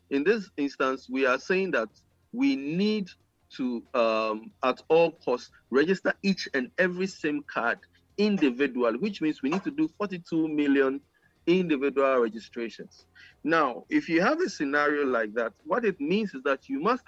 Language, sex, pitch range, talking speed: English, male, 120-185 Hz, 160 wpm